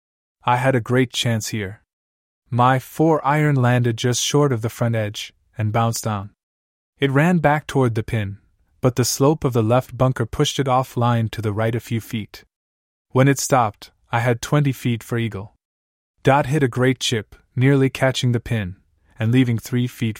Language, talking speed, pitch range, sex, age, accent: English, 185 wpm, 100-135 Hz, male, 20-39, American